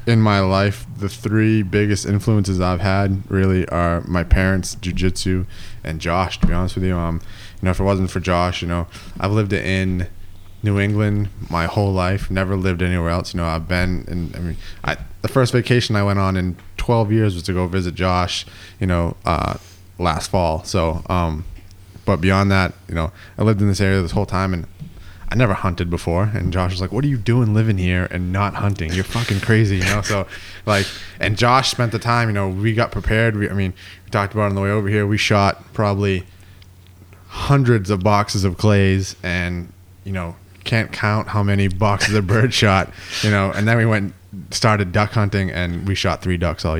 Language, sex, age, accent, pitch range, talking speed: English, male, 20-39, American, 90-105 Hz, 215 wpm